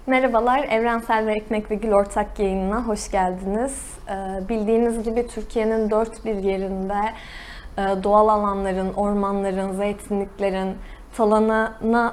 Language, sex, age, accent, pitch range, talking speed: Turkish, female, 20-39, native, 200-235 Hz, 115 wpm